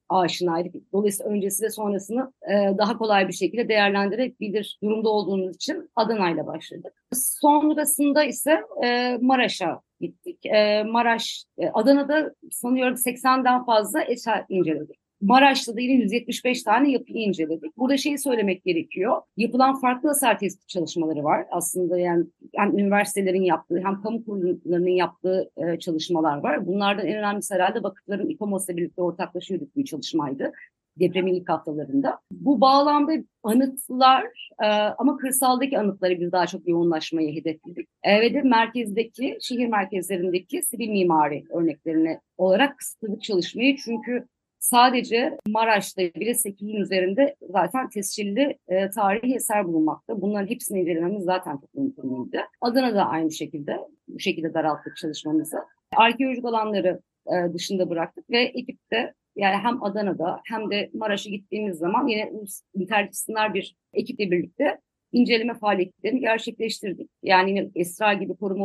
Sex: female